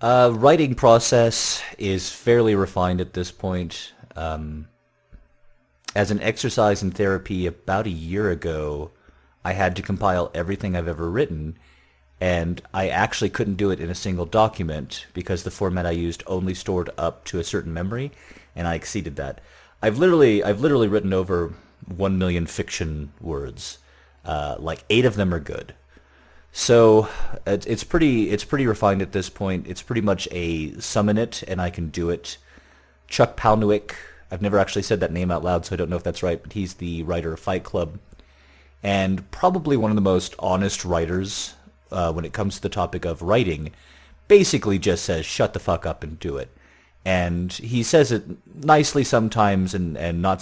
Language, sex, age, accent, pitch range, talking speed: English, male, 30-49, American, 80-100 Hz, 180 wpm